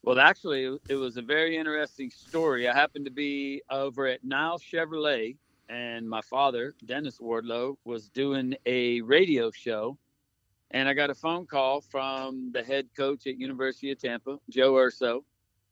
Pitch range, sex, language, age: 130-155 Hz, male, English, 50-69